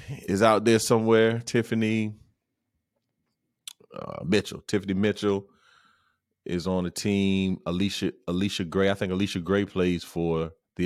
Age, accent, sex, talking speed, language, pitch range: 30-49, American, male, 125 wpm, English, 80-110 Hz